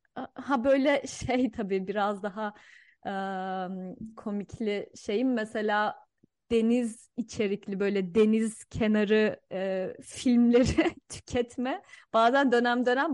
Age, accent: 30-49, native